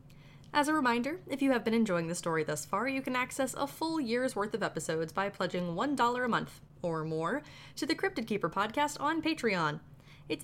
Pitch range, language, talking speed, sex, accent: 175-260 Hz, English, 205 wpm, female, American